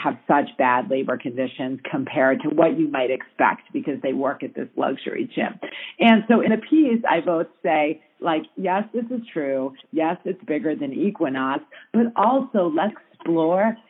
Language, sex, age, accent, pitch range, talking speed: English, female, 40-59, American, 155-215 Hz, 175 wpm